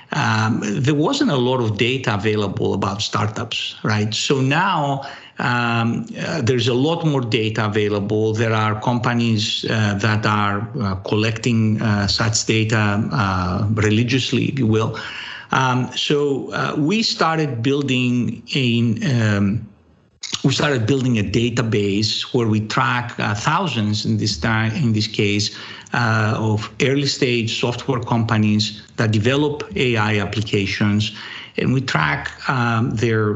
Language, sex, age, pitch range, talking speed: English, male, 50-69, 105-125 Hz, 135 wpm